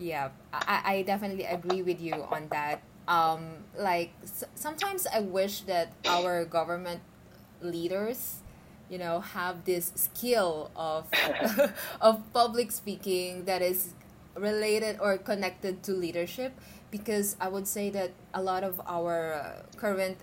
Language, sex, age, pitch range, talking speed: English, female, 20-39, 175-210 Hz, 135 wpm